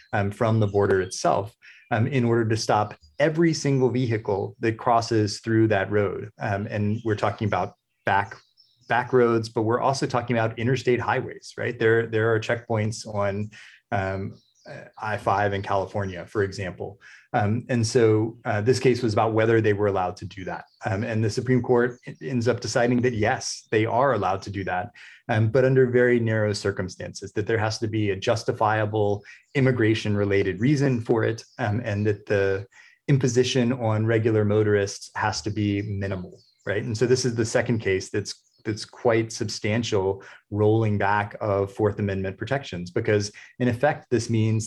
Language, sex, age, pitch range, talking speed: English, male, 30-49, 105-120 Hz, 170 wpm